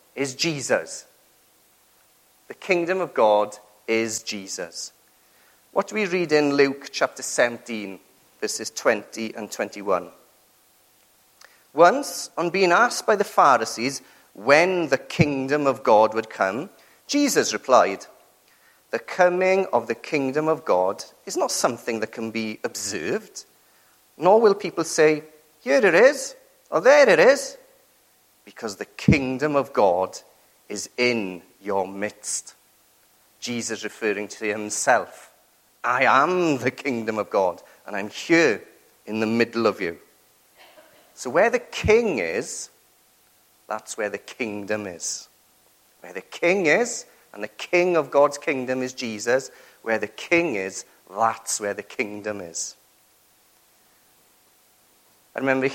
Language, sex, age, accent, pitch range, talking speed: English, male, 40-59, British, 110-165 Hz, 130 wpm